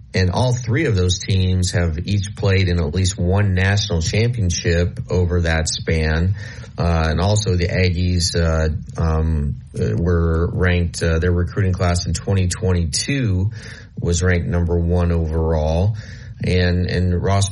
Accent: American